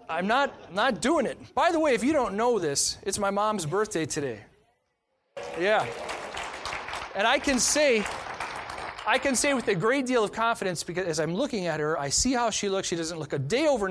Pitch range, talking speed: 165-265 Hz, 210 wpm